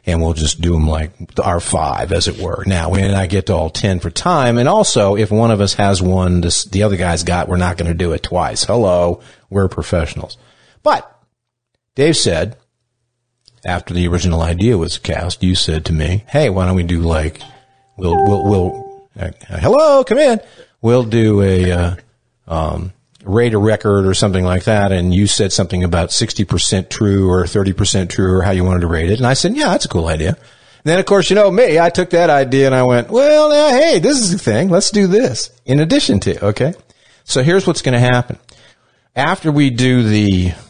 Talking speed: 210 wpm